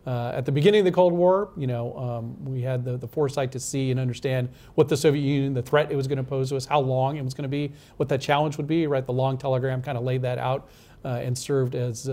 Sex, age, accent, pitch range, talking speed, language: male, 40-59, American, 125-145 Hz, 285 wpm, English